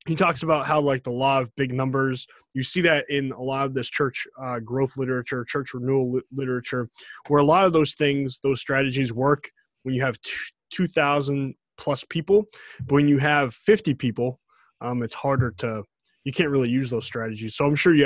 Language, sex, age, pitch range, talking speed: English, male, 20-39, 125-155 Hz, 200 wpm